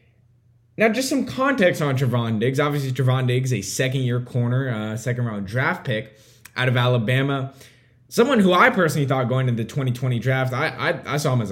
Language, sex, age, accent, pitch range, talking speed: English, male, 10-29, American, 120-155 Hz, 190 wpm